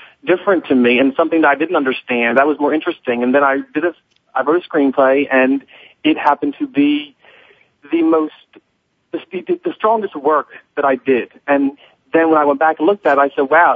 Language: English